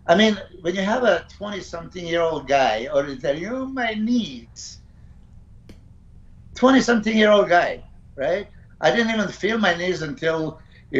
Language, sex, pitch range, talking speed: English, male, 125-175 Hz, 135 wpm